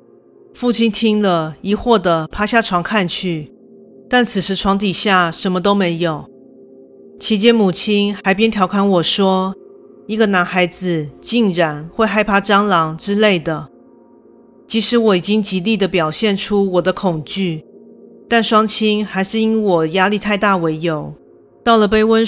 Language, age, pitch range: Chinese, 40-59, 175-215 Hz